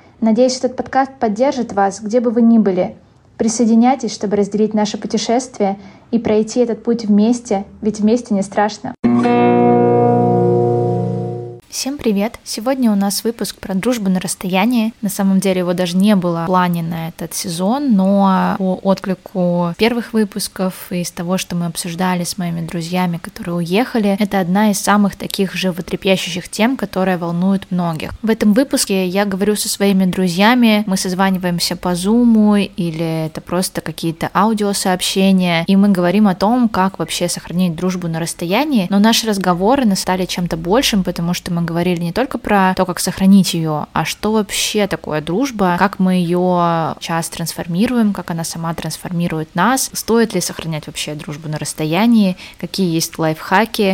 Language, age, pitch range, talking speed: Russian, 20-39, 170-210 Hz, 160 wpm